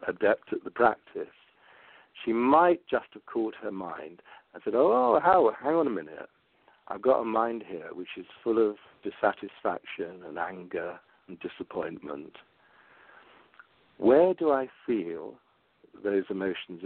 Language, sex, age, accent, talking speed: English, male, 60-79, British, 140 wpm